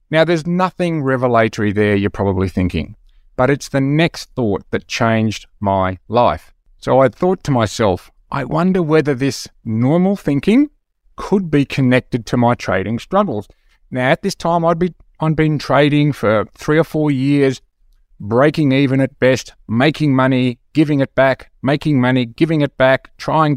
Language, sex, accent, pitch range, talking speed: English, male, Australian, 110-150 Hz, 165 wpm